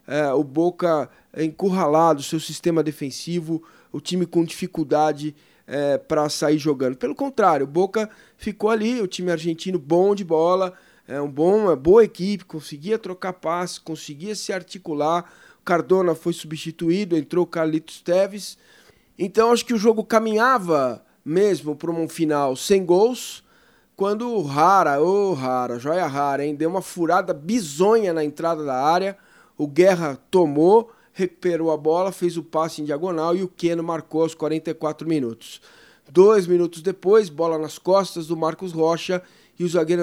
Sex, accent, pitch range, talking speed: male, Brazilian, 155-190 Hz, 155 wpm